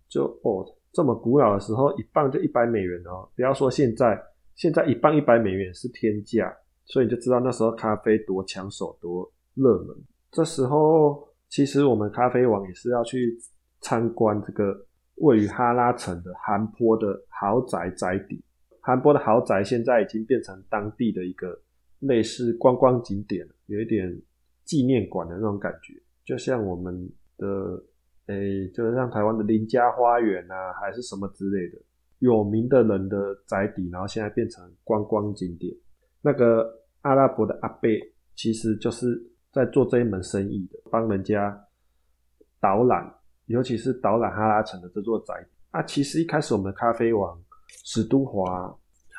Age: 20-39